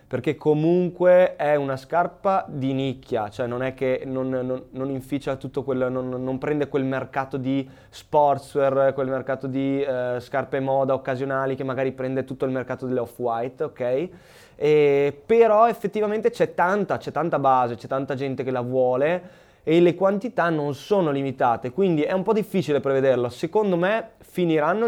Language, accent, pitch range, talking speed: Italian, native, 130-155 Hz, 160 wpm